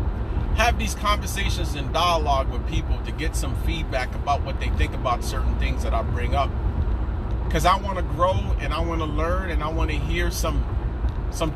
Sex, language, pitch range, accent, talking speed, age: male, English, 70-90 Hz, American, 200 wpm, 40-59